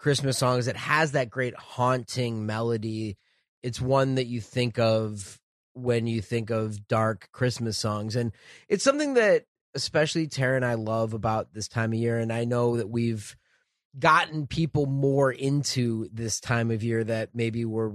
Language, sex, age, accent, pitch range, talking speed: English, male, 30-49, American, 115-130 Hz, 170 wpm